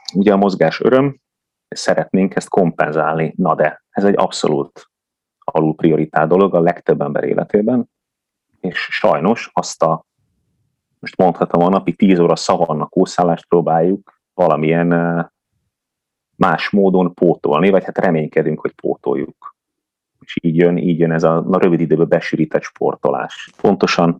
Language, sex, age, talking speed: Hungarian, male, 30-49, 135 wpm